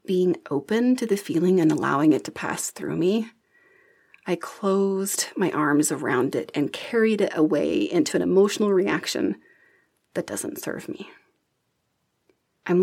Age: 30-49